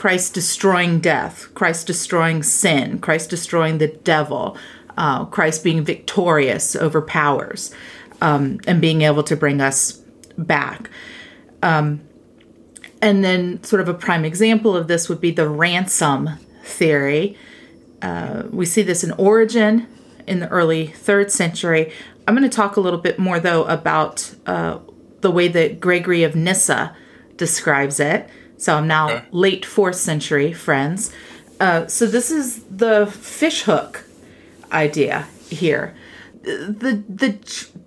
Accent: American